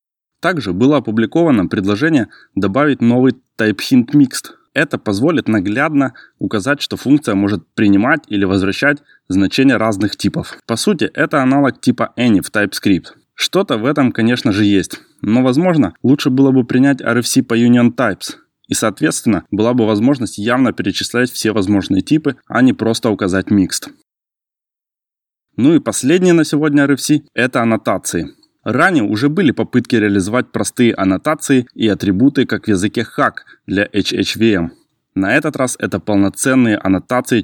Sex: male